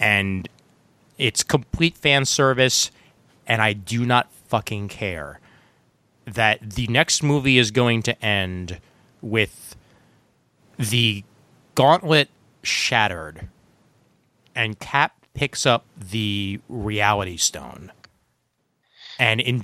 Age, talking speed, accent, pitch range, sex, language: 30-49, 100 wpm, American, 100-125 Hz, male, English